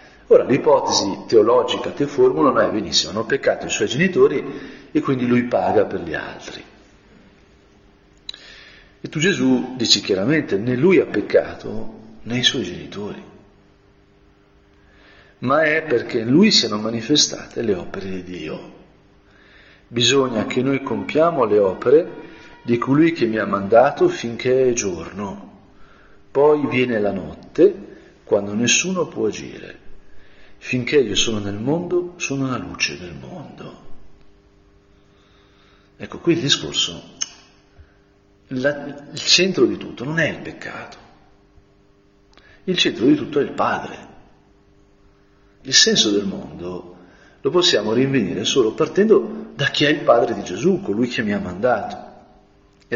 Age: 50-69